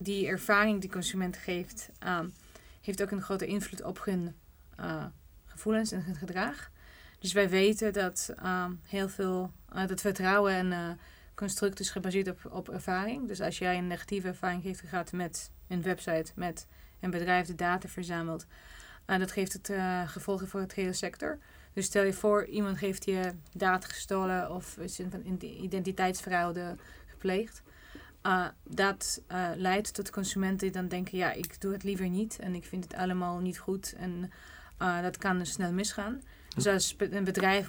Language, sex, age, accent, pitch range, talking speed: Dutch, female, 20-39, Dutch, 180-195 Hz, 175 wpm